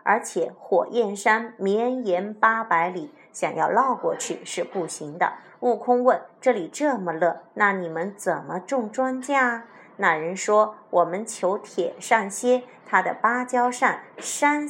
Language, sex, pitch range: Chinese, female, 190-255 Hz